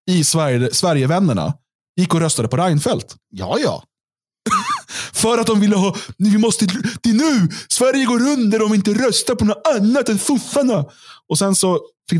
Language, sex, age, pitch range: Swedish, male, 30-49, 125-185 Hz